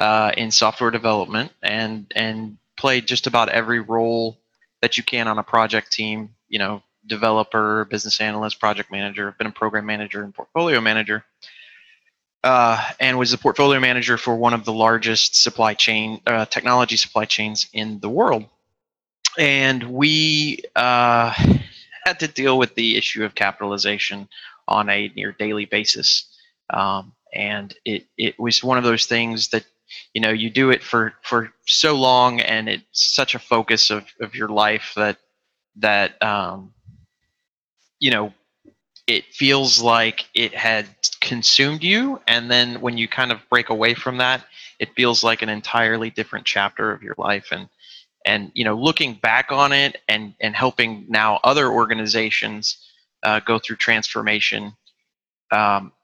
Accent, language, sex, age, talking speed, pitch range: American, English, male, 20-39, 160 wpm, 105-125 Hz